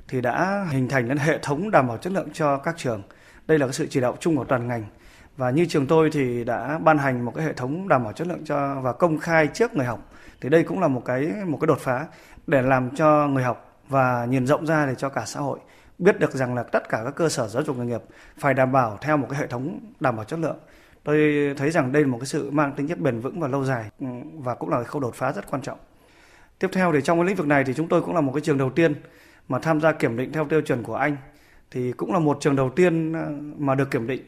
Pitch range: 130-160 Hz